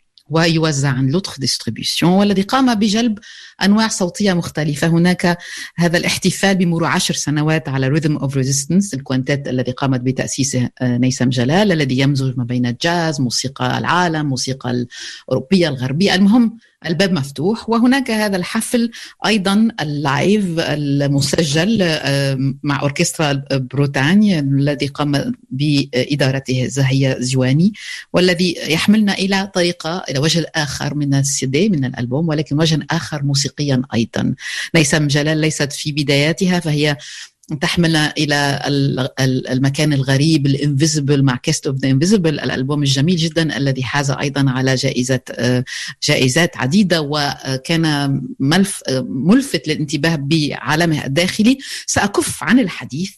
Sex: female